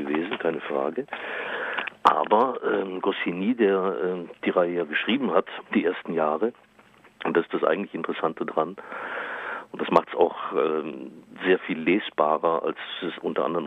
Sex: male